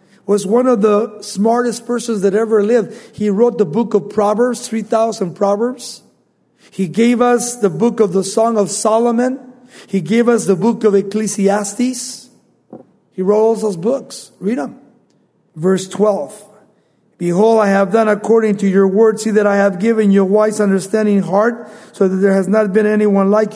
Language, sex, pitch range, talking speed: English, male, 195-240 Hz, 175 wpm